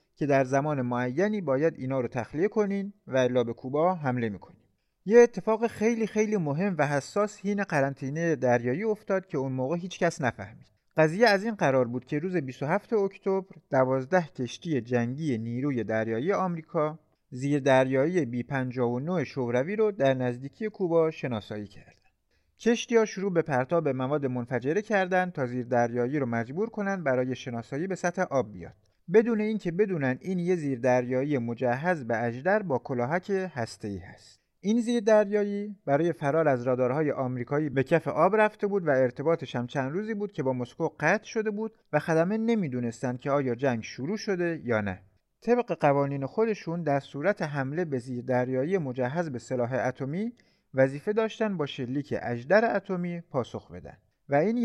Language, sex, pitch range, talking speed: Persian, male, 125-195 Hz, 155 wpm